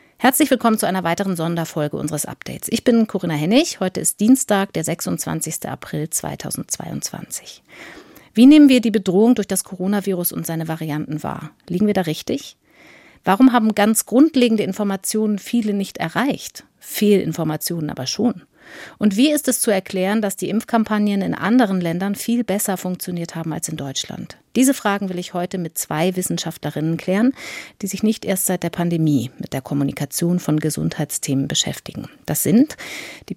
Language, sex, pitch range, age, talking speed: German, female, 165-220 Hz, 50-69, 160 wpm